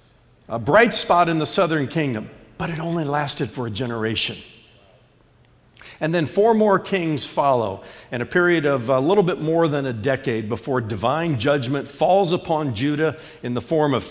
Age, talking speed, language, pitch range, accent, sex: 50-69, 175 wpm, English, 120-170 Hz, American, male